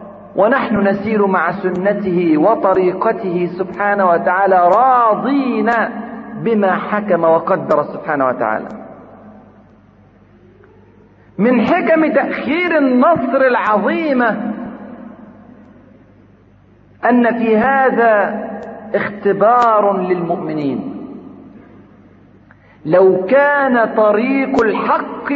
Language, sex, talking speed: Arabic, male, 65 wpm